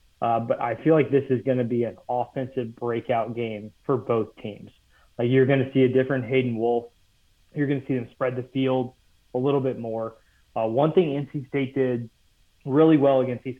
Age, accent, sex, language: 30-49, American, male, English